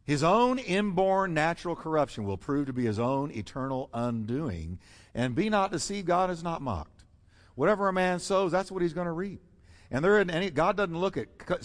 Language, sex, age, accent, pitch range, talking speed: English, male, 50-69, American, 100-165 Hz, 200 wpm